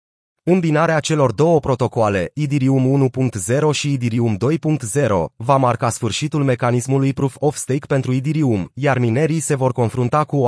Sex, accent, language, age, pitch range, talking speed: male, native, Romanian, 30-49, 120-150 Hz, 145 wpm